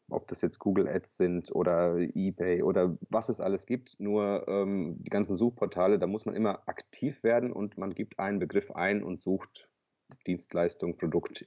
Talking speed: 180 wpm